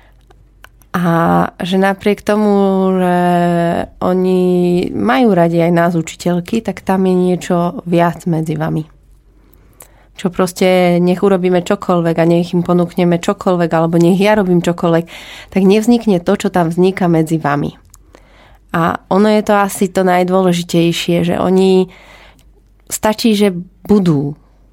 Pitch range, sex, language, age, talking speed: 165-190 Hz, female, Slovak, 30-49, 130 wpm